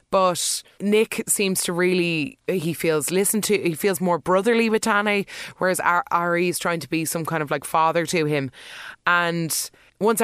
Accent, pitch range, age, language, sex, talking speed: Irish, 160-205 Hz, 20-39, English, female, 175 wpm